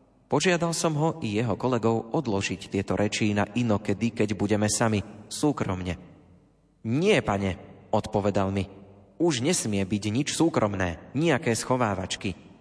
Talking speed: 125 wpm